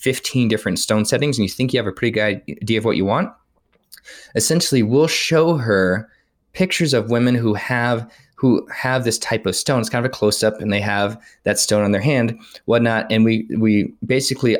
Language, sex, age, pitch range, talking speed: English, male, 20-39, 100-125 Hz, 210 wpm